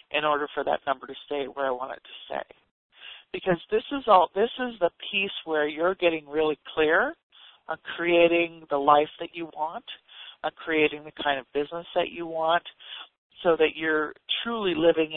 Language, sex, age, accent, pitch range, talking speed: English, male, 50-69, American, 145-170 Hz, 185 wpm